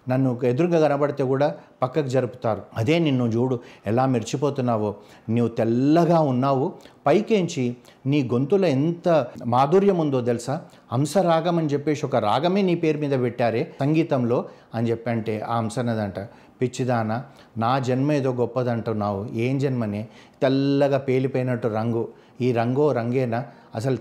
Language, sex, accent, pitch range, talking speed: Telugu, male, native, 120-145 Hz, 125 wpm